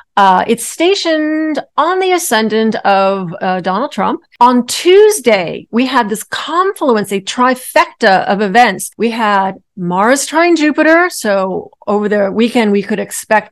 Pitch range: 200-280 Hz